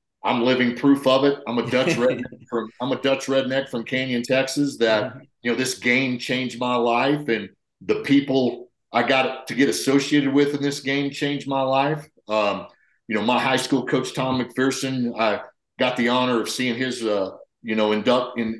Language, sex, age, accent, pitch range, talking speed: English, male, 50-69, American, 110-130 Hz, 195 wpm